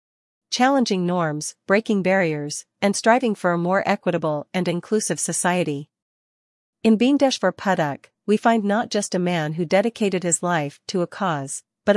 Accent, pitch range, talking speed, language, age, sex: American, 165-205 Hz, 150 wpm, English, 40-59, female